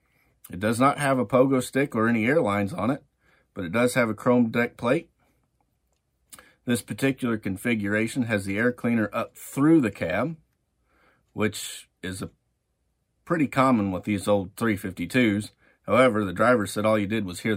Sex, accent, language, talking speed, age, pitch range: male, American, English, 165 wpm, 40-59, 100-125 Hz